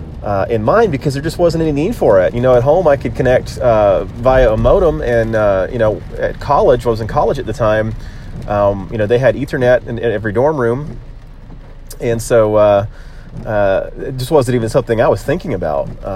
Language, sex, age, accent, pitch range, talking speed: English, male, 30-49, American, 100-125 Hz, 225 wpm